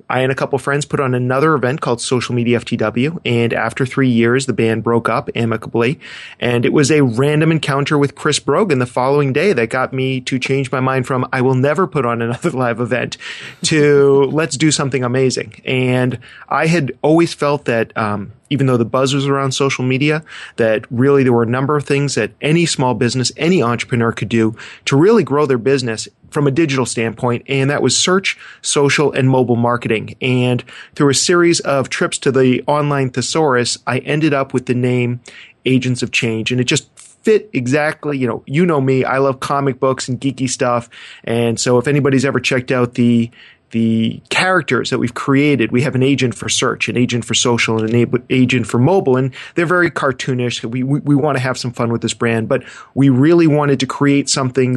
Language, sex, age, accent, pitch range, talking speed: English, male, 30-49, American, 120-140 Hz, 210 wpm